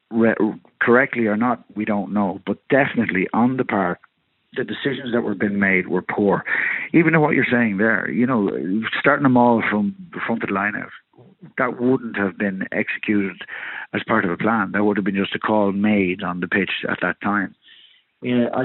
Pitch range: 100-120 Hz